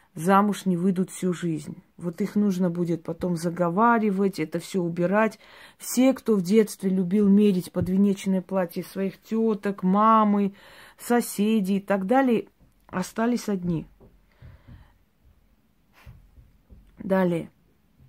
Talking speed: 105 wpm